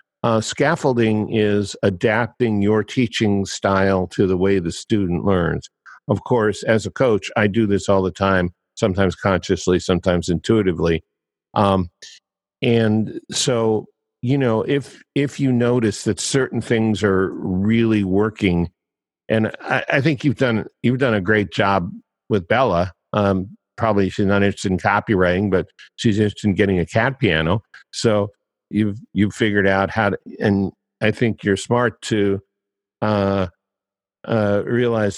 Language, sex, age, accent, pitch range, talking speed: English, male, 50-69, American, 95-110 Hz, 150 wpm